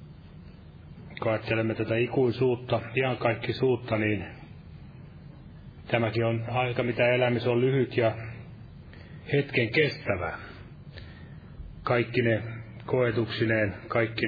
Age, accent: 30-49, native